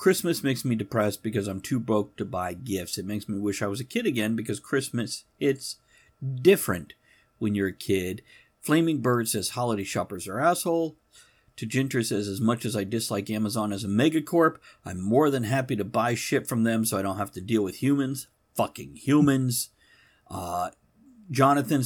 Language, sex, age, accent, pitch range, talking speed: English, male, 50-69, American, 105-145 Hz, 185 wpm